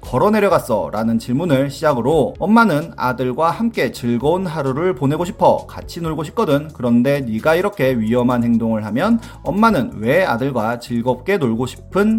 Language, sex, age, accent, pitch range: Korean, male, 30-49, native, 120-165 Hz